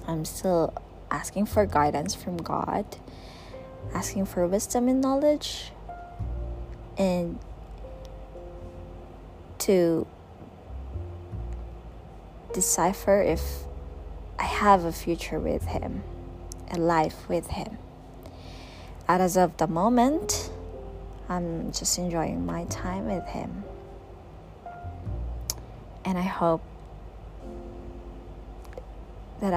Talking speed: 85 wpm